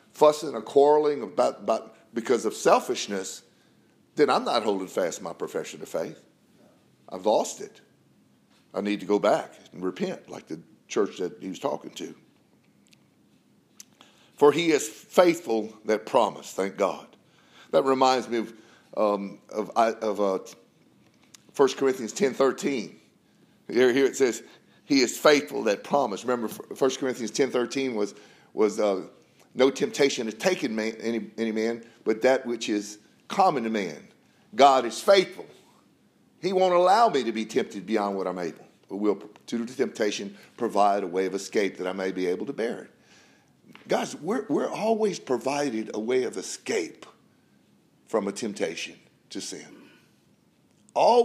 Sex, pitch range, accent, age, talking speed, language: male, 110-180 Hz, American, 50-69, 160 wpm, English